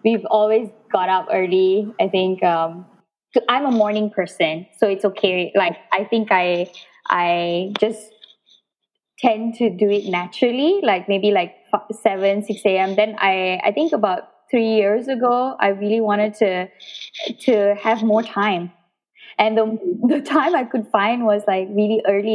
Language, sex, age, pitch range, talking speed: English, female, 10-29, 190-225 Hz, 160 wpm